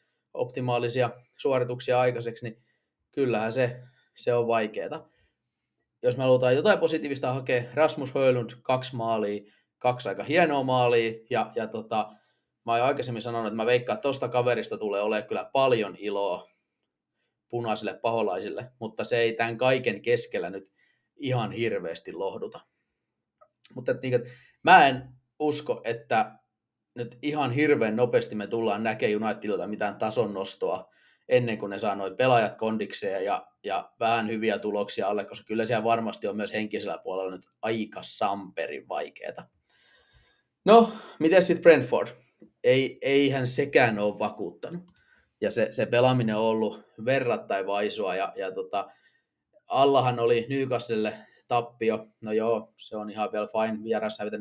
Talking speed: 140 wpm